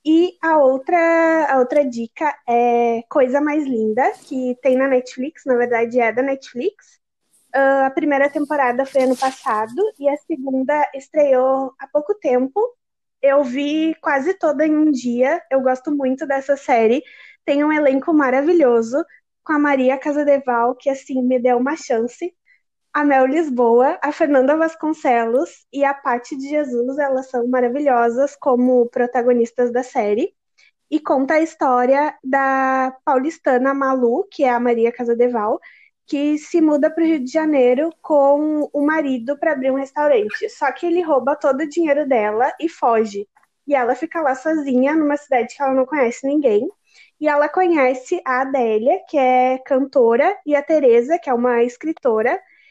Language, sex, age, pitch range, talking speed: Portuguese, female, 20-39, 255-310 Hz, 160 wpm